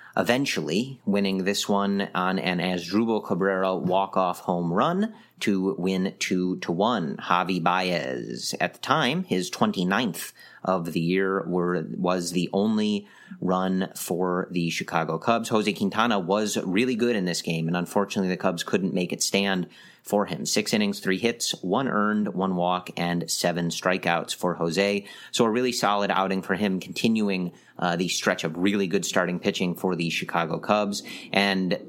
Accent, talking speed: American, 165 wpm